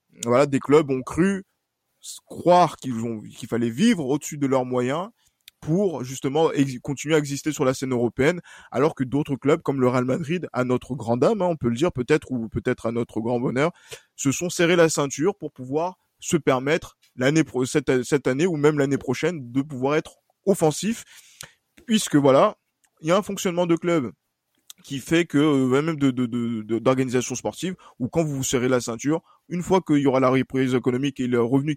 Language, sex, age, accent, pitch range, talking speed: French, male, 20-39, French, 130-170 Hz, 205 wpm